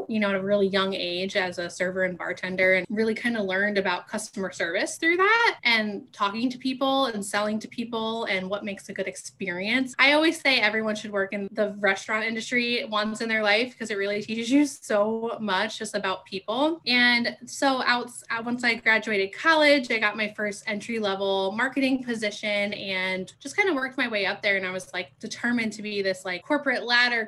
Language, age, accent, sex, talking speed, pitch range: English, 10-29, American, female, 210 wpm, 195-235 Hz